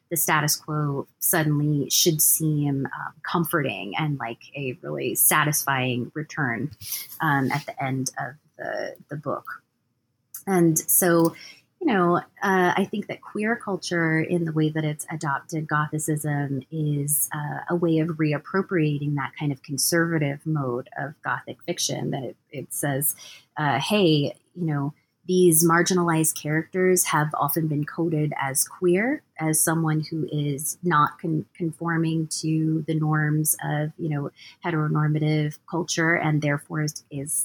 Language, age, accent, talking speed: English, 30-49, American, 145 wpm